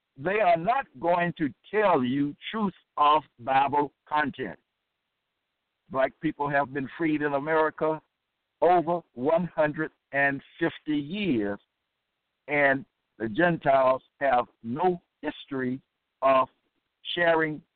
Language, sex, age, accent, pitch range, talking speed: English, male, 60-79, American, 130-175 Hz, 100 wpm